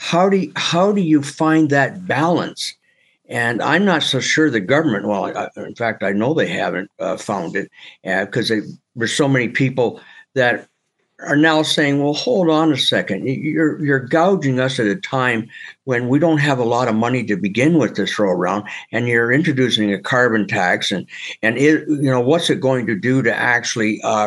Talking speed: 205 wpm